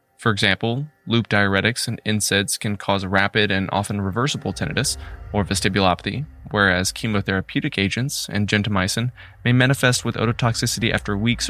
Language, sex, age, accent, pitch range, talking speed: English, male, 20-39, American, 95-115 Hz, 135 wpm